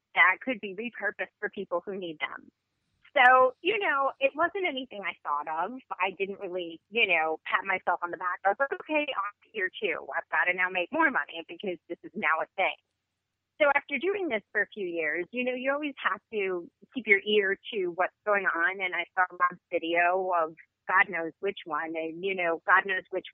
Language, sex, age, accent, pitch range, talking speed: English, female, 30-49, American, 175-255 Hz, 225 wpm